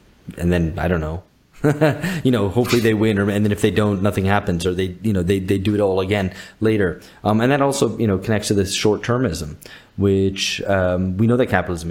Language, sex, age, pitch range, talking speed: English, male, 30-49, 85-105 Hz, 220 wpm